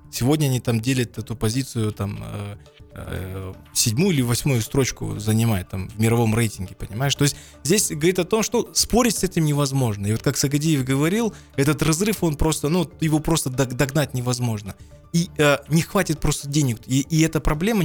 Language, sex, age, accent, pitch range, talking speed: Russian, male, 20-39, native, 115-160 Hz, 180 wpm